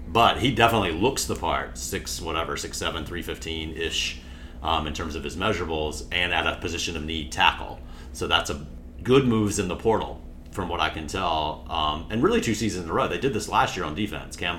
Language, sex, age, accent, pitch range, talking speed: English, male, 40-59, American, 75-95 Hz, 215 wpm